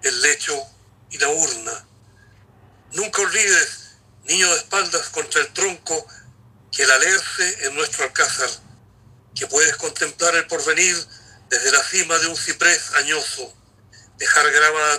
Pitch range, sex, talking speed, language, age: 115-160 Hz, male, 130 wpm, Spanish, 40-59